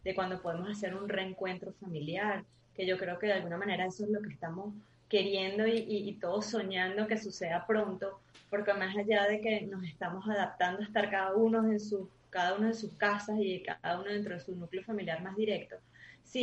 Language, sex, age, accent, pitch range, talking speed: Spanish, female, 20-39, Colombian, 175-210 Hz, 210 wpm